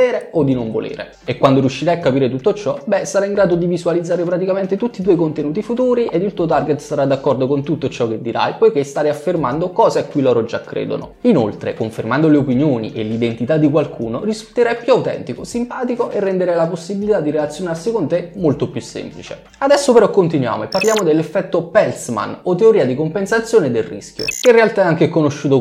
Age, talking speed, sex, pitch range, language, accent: 20-39, 200 wpm, male, 130-200 Hz, Italian, native